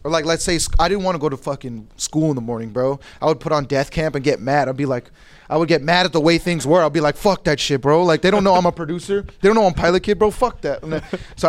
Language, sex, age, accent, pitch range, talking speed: English, male, 20-39, American, 125-155 Hz, 320 wpm